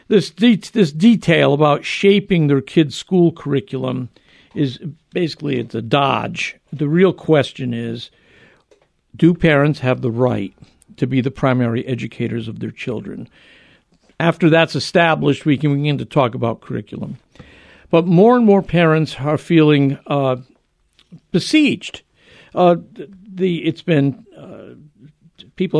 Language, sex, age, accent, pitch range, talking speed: English, male, 60-79, American, 130-165 Hz, 135 wpm